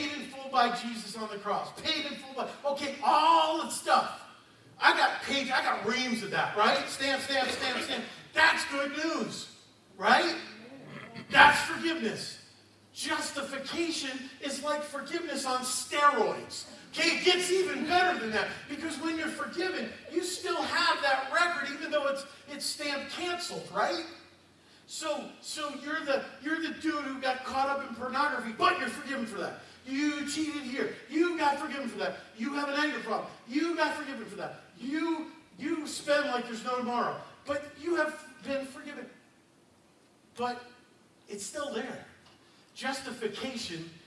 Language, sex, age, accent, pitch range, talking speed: English, male, 40-59, American, 245-300 Hz, 155 wpm